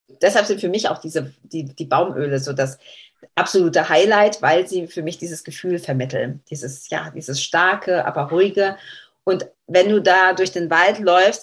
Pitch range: 160-195 Hz